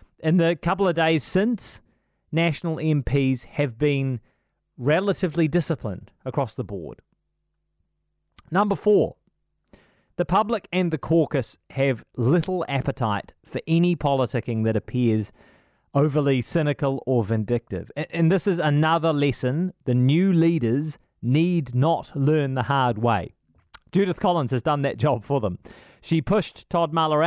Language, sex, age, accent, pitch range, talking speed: English, male, 30-49, Australian, 120-165 Hz, 130 wpm